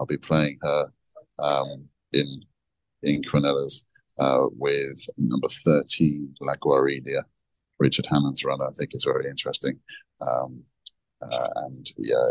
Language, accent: English, British